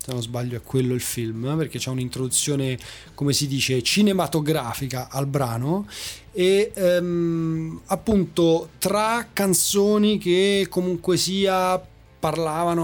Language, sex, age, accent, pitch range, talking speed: Italian, male, 30-49, native, 150-190 Hz, 115 wpm